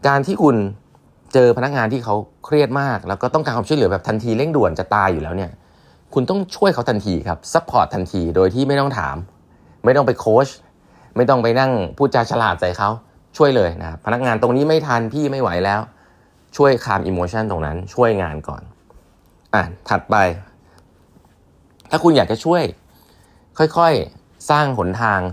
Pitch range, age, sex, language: 90-125 Hz, 20-39, male, Thai